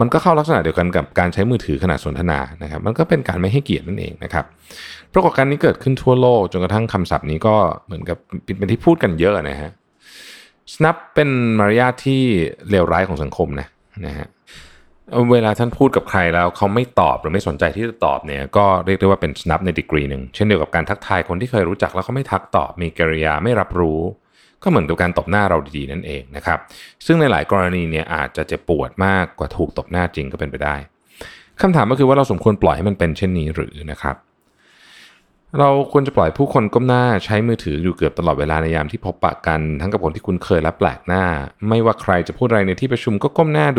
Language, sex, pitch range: Thai, male, 80-115 Hz